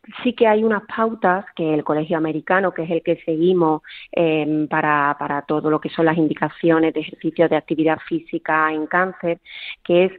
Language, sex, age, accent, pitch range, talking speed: Spanish, female, 30-49, Spanish, 160-200 Hz, 190 wpm